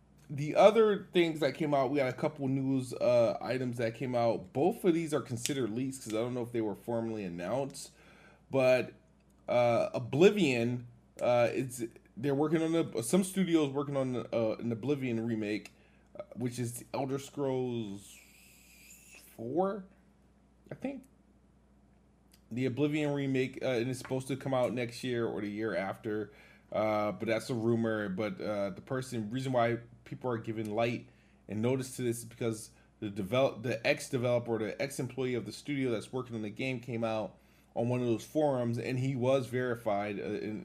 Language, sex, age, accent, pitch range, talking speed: English, male, 20-39, American, 110-135 Hz, 175 wpm